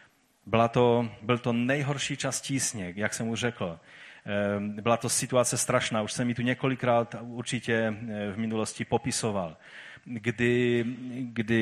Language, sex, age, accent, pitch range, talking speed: Czech, male, 30-49, native, 105-120 Hz, 135 wpm